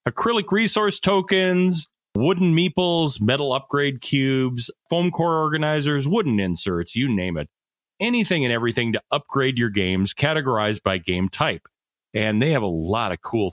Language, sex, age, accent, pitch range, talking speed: English, male, 30-49, American, 100-135 Hz, 150 wpm